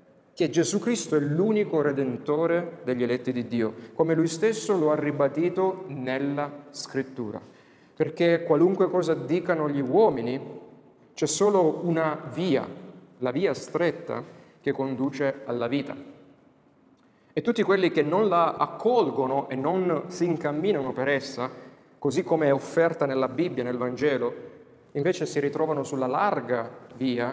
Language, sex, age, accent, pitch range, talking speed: Italian, male, 40-59, native, 130-170 Hz, 135 wpm